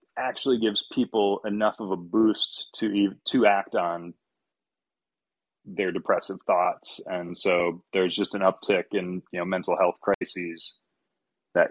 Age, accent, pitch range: 30-49, American, 85-105 Hz